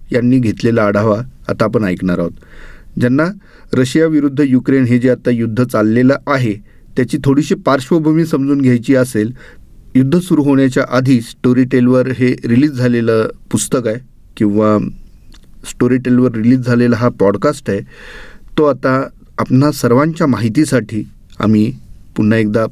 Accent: native